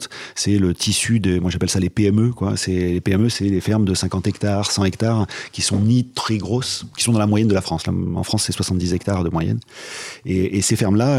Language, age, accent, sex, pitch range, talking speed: French, 30-49, French, male, 90-105 Hz, 240 wpm